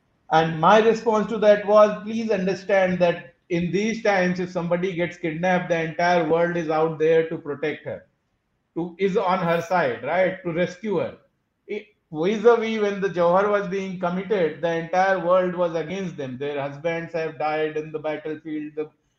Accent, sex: native, male